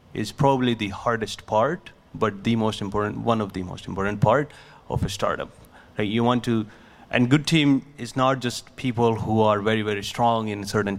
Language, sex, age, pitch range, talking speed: English, male, 30-49, 105-125 Hz, 190 wpm